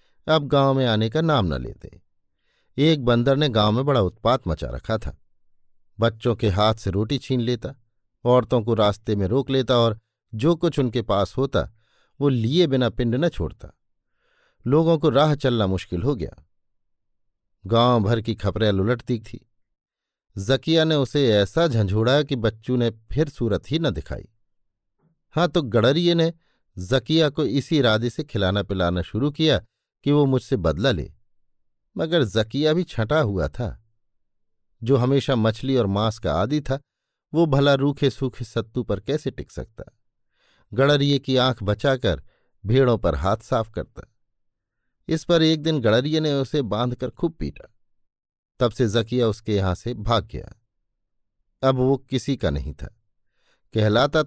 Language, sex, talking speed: Hindi, male, 160 wpm